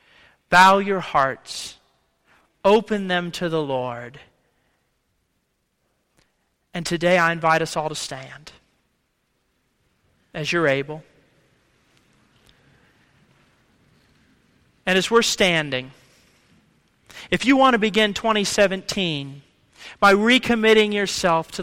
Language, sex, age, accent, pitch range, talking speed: English, male, 40-59, American, 155-215 Hz, 90 wpm